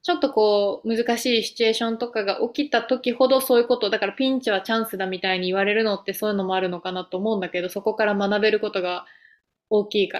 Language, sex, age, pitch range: Japanese, female, 20-39, 205-260 Hz